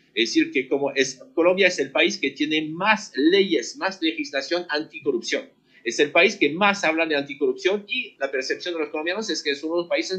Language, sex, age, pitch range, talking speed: Spanish, male, 50-69, 140-200 Hz, 220 wpm